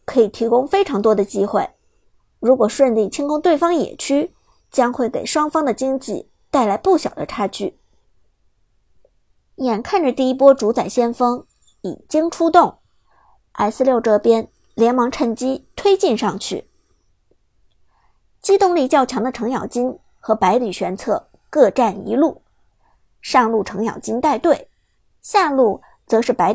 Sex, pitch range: male, 215-315 Hz